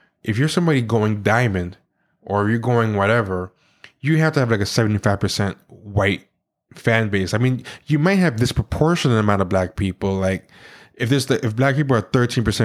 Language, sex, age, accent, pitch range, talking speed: English, male, 20-39, American, 100-125 Hz, 175 wpm